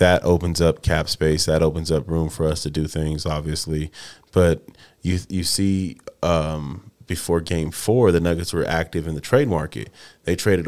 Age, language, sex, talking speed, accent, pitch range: 30-49, English, male, 185 wpm, American, 80-90 Hz